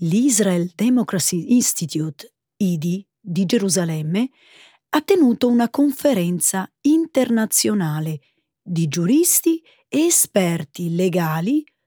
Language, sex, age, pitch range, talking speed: Italian, female, 30-49, 175-270 Hz, 80 wpm